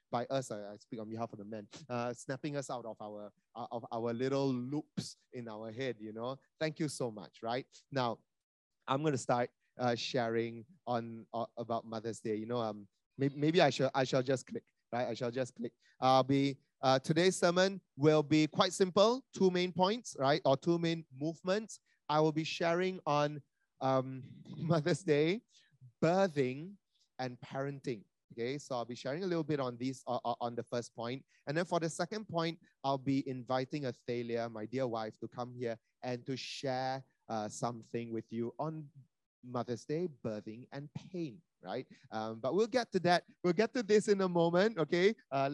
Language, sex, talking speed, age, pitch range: English, male, 190 wpm, 30-49, 120-165 Hz